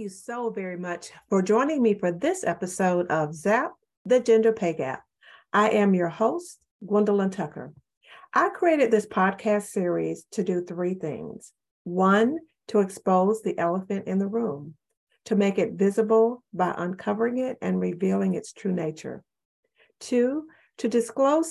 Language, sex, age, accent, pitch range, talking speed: English, female, 50-69, American, 185-230 Hz, 150 wpm